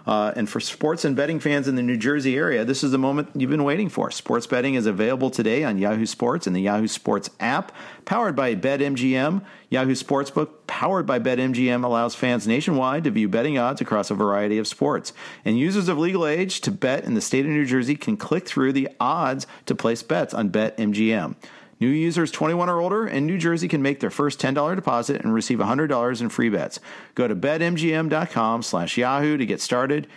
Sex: male